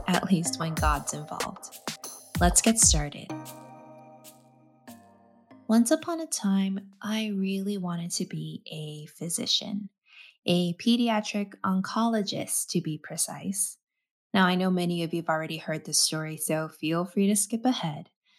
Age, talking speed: 20-39, 135 wpm